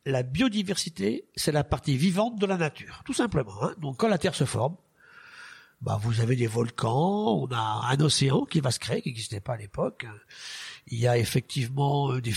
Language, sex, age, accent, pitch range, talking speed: French, male, 50-69, French, 135-190 Hz, 200 wpm